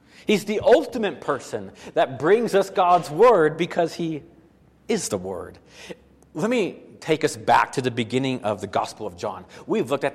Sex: male